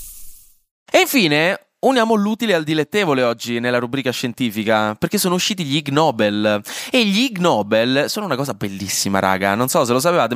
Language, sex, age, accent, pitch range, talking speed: Italian, male, 20-39, native, 120-180 Hz, 160 wpm